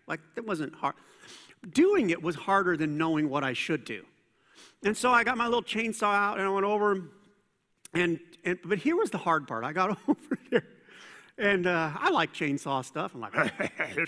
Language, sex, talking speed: English, male, 205 wpm